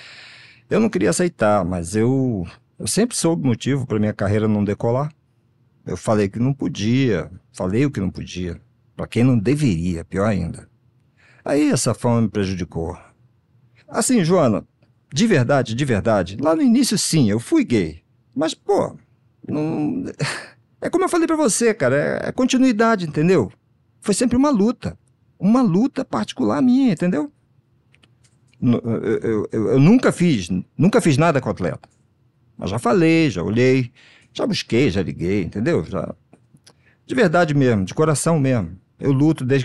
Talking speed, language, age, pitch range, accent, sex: 155 wpm, Portuguese, 50-69, 115-180 Hz, Brazilian, male